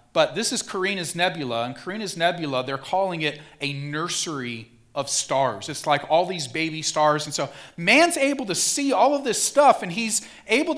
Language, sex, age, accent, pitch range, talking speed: English, male, 40-59, American, 140-210 Hz, 190 wpm